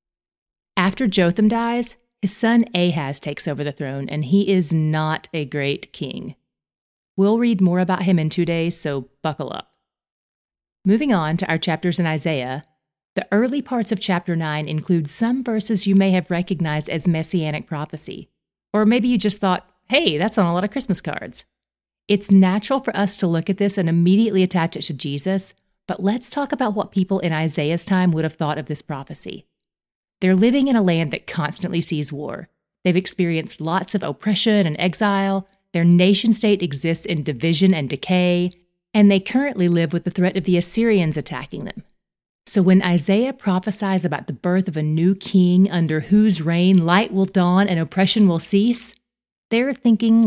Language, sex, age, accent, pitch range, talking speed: English, female, 30-49, American, 165-210 Hz, 180 wpm